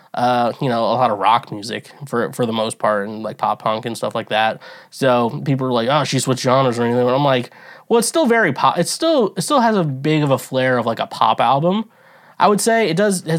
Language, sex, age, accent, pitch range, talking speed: English, male, 20-39, American, 120-180 Hz, 265 wpm